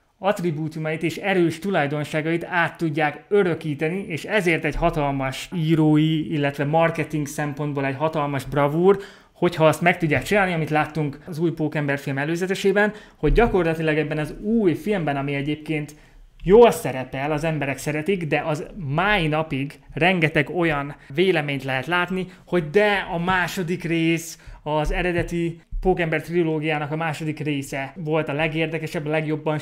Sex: male